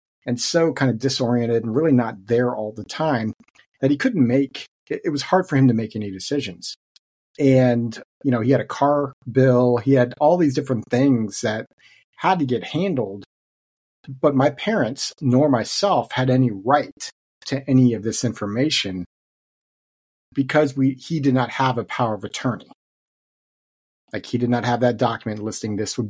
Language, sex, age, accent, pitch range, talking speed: English, male, 40-59, American, 115-140 Hz, 180 wpm